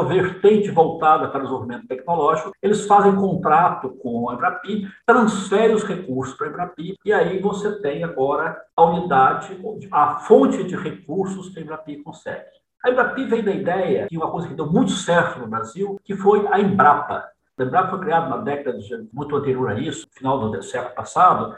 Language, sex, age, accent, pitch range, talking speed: Portuguese, male, 50-69, Brazilian, 145-200 Hz, 185 wpm